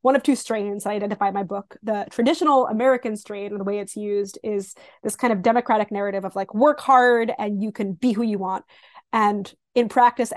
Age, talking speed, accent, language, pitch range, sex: 20-39, 215 wpm, American, English, 200-245 Hz, female